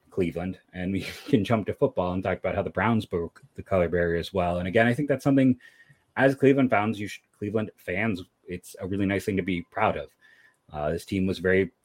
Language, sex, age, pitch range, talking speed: English, male, 30-49, 90-120 Hz, 235 wpm